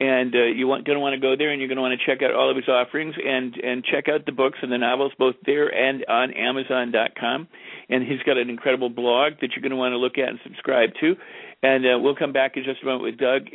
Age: 50-69